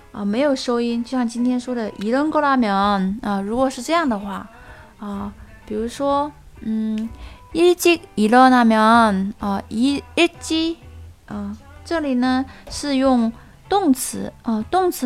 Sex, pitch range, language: female, 210-265 Hz, Chinese